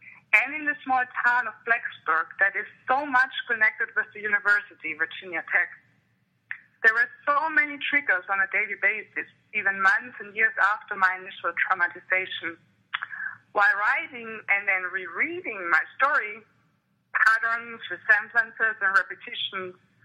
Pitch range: 195-280 Hz